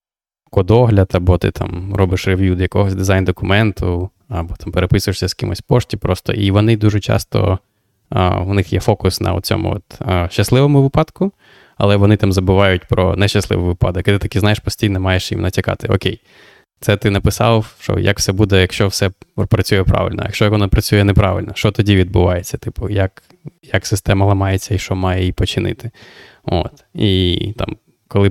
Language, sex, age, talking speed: Ukrainian, male, 20-39, 165 wpm